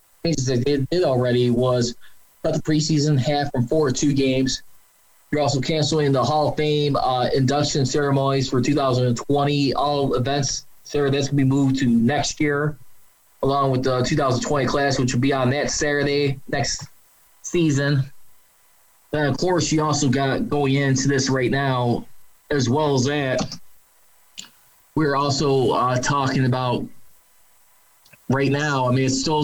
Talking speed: 155 wpm